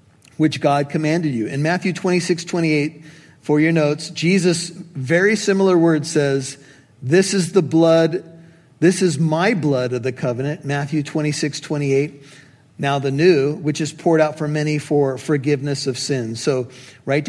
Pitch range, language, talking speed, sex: 135-160 Hz, English, 170 wpm, male